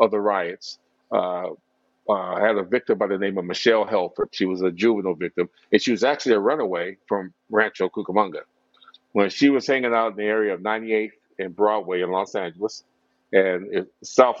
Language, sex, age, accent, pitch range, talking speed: English, male, 50-69, American, 100-125 Hz, 195 wpm